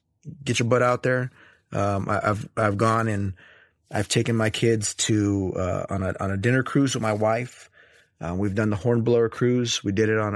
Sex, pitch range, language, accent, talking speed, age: male, 95-120 Hz, English, American, 215 wpm, 30-49